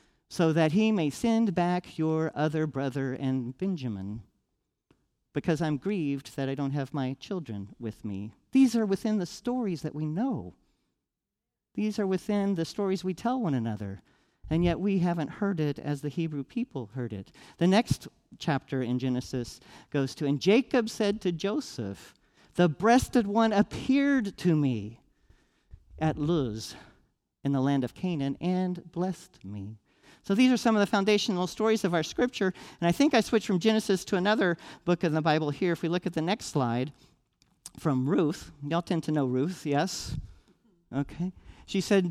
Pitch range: 135-195 Hz